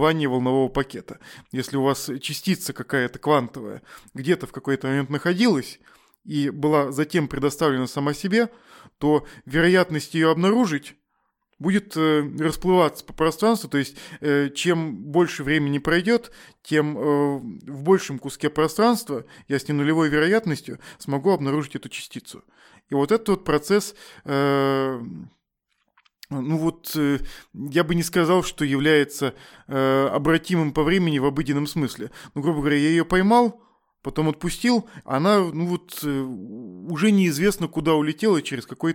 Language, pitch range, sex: Russian, 140-165 Hz, male